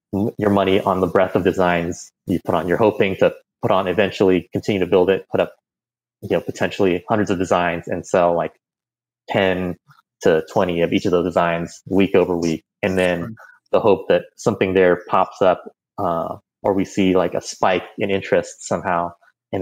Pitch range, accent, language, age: 90-100 Hz, American, English, 20-39